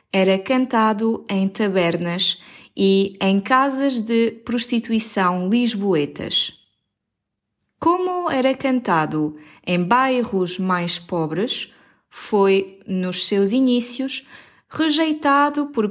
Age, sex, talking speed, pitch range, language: 20-39, female, 85 wpm, 195-275 Hz, Portuguese